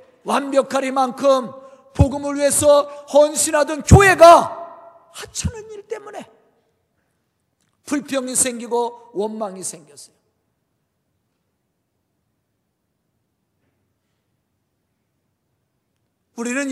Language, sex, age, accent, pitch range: Korean, male, 50-69, native, 215-295 Hz